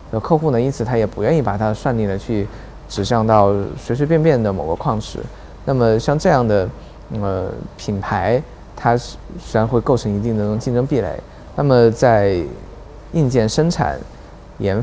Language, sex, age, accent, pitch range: Chinese, male, 20-39, native, 105-125 Hz